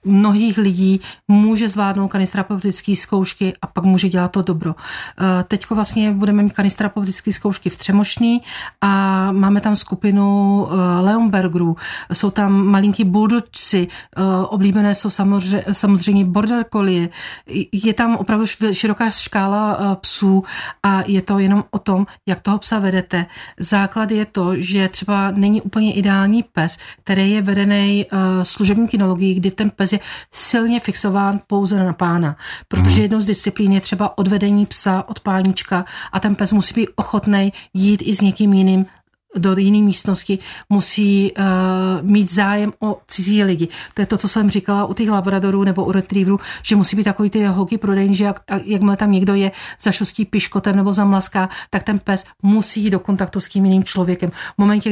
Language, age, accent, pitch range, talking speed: Czech, 40-59, native, 190-205 Hz, 160 wpm